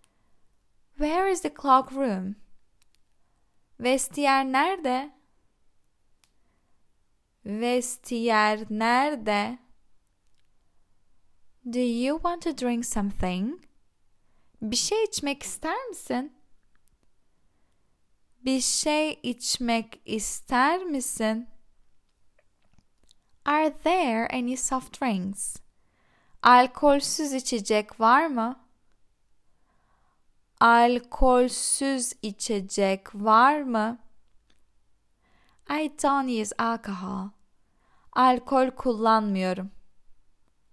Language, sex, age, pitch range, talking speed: Turkish, female, 10-29, 215-275 Hz, 65 wpm